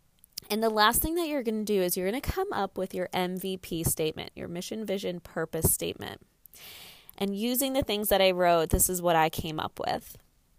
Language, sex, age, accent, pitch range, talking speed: English, female, 20-39, American, 170-210 Hz, 215 wpm